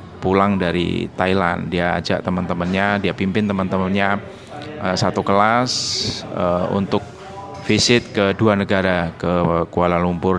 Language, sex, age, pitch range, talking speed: Indonesian, male, 30-49, 90-105 Hz, 120 wpm